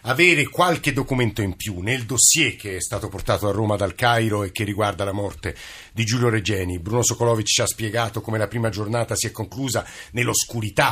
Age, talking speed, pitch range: 50-69, 200 wpm, 110-130 Hz